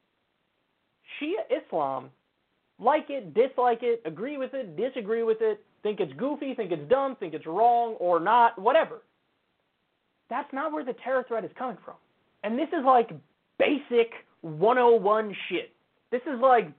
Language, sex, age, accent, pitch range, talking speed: English, male, 30-49, American, 200-265 Hz, 155 wpm